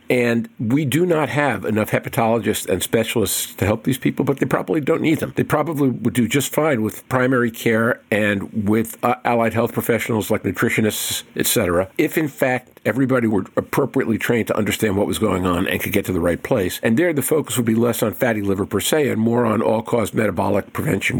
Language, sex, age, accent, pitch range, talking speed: English, male, 50-69, American, 100-125 Hz, 215 wpm